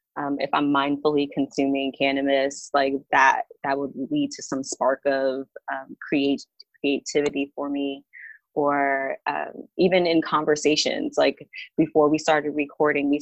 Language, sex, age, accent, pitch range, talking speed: English, female, 20-39, American, 140-155 Hz, 140 wpm